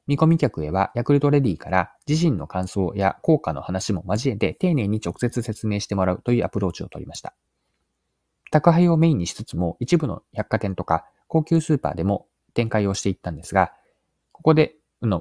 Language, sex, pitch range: Japanese, male, 95-155 Hz